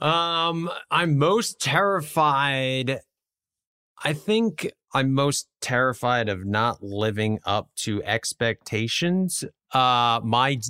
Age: 30-49